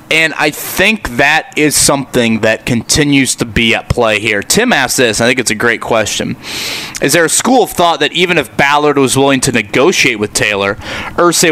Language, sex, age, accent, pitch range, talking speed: English, male, 30-49, American, 120-155 Hz, 210 wpm